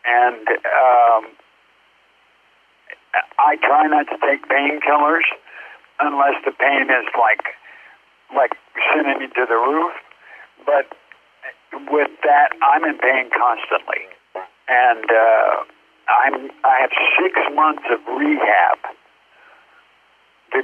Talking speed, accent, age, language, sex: 105 wpm, American, 50-69, English, male